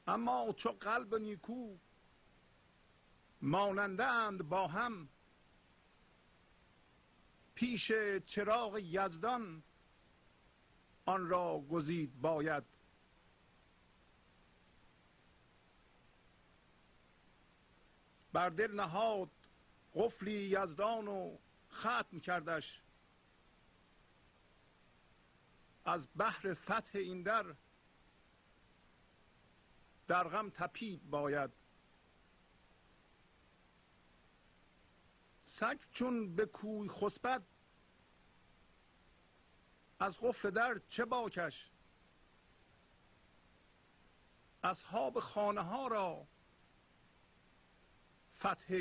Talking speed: 55 wpm